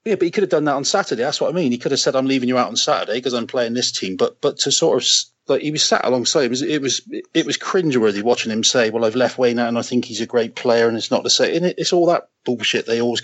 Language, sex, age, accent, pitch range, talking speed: English, male, 30-49, British, 115-140 Hz, 330 wpm